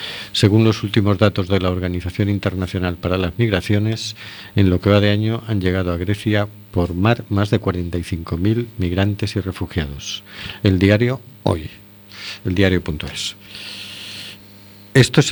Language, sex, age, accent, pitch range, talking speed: Spanish, male, 50-69, Spanish, 95-110 Hz, 140 wpm